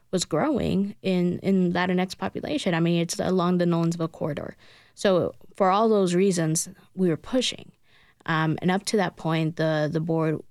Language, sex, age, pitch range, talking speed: English, female, 20-39, 155-180 Hz, 170 wpm